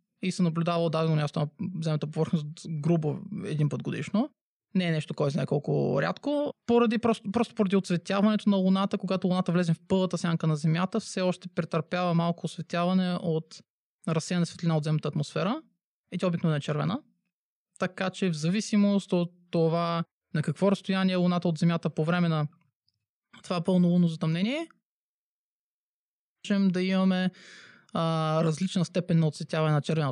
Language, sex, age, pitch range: Bulgarian, male, 20-39, 165-205 Hz